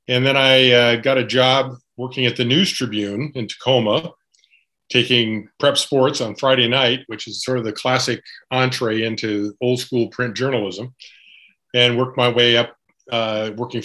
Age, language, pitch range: 50-69, English, 110-130 Hz